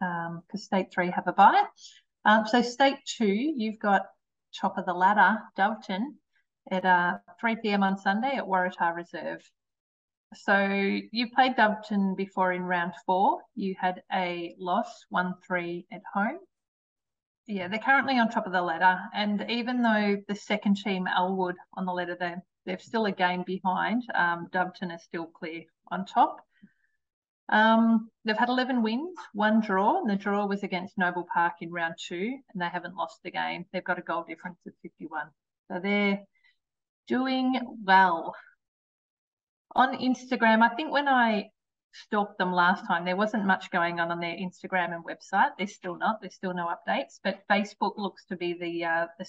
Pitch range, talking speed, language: 180-220 Hz, 170 wpm, English